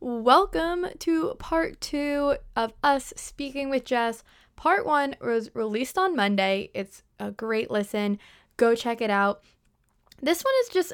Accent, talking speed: American, 150 wpm